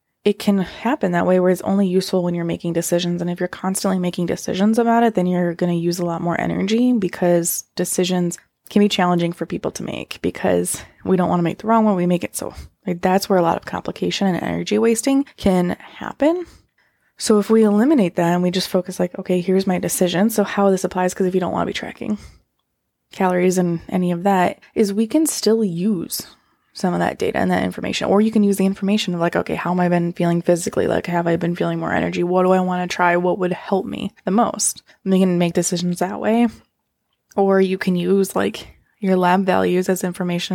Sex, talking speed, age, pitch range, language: female, 230 wpm, 20-39, 175-205 Hz, English